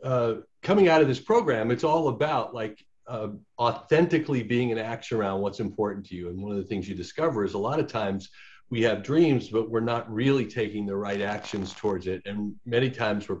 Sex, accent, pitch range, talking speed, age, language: male, American, 100-140 Hz, 220 wpm, 50-69, English